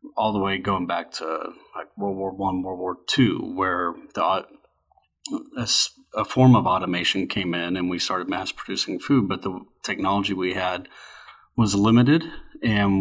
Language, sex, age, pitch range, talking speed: English, male, 30-49, 95-110 Hz, 165 wpm